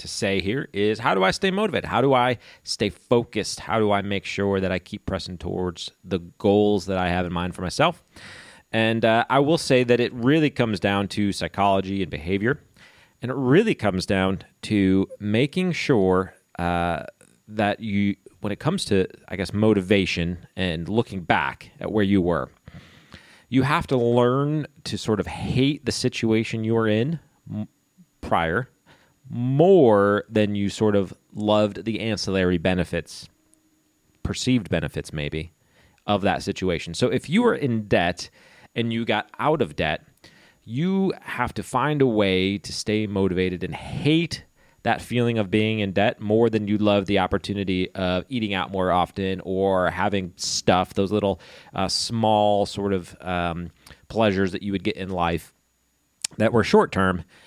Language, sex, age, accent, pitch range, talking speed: English, male, 30-49, American, 95-115 Hz, 170 wpm